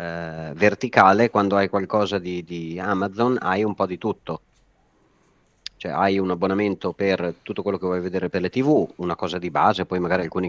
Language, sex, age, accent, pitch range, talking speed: Italian, male, 30-49, native, 95-120 Hz, 190 wpm